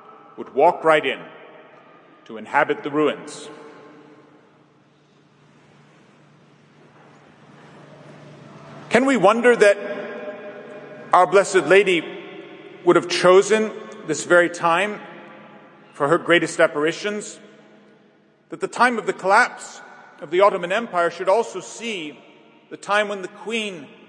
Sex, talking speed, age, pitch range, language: male, 105 wpm, 40-59, 165-235 Hz, English